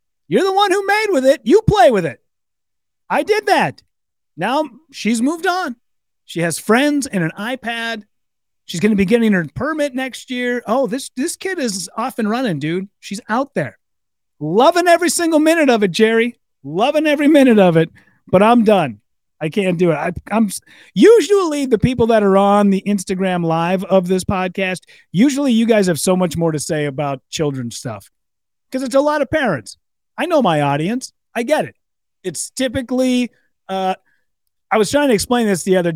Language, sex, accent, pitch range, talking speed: English, male, American, 170-255 Hz, 190 wpm